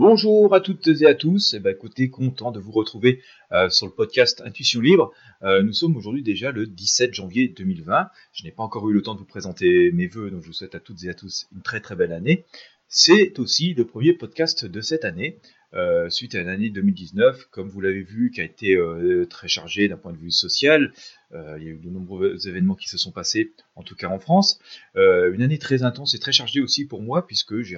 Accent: French